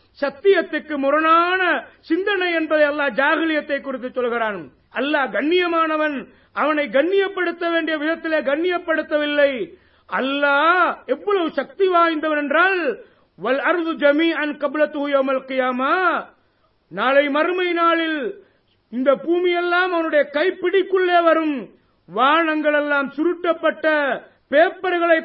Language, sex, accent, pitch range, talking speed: Tamil, male, native, 280-335 Hz, 80 wpm